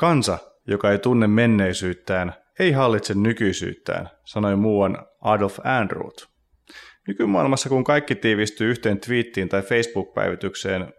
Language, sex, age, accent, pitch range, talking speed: Finnish, male, 30-49, native, 100-125 Hz, 110 wpm